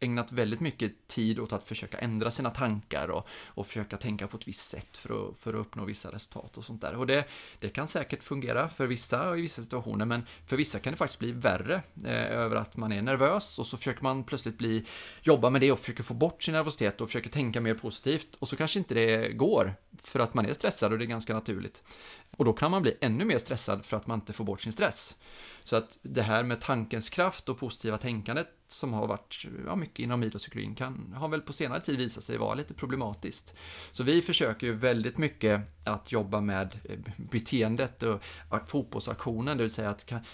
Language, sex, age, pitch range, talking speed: Swedish, male, 30-49, 110-130 Hz, 225 wpm